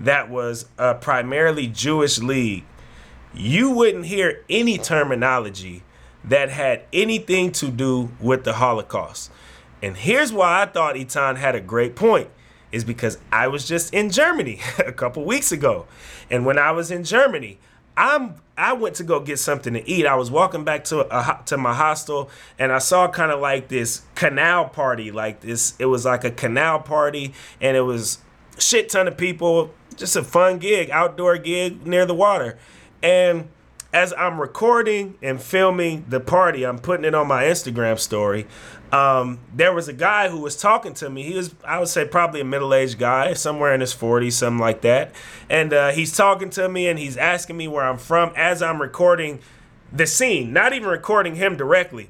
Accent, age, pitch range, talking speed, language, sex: American, 30-49, 125-180 Hz, 185 wpm, English, male